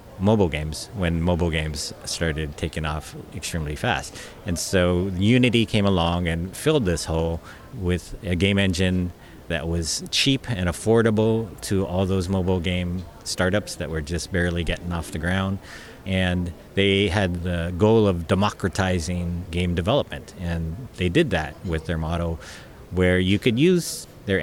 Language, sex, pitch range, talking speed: English, male, 85-100 Hz, 155 wpm